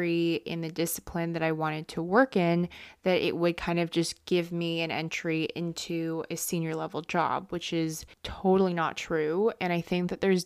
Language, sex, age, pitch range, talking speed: English, female, 20-39, 165-185 Hz, 195 wpm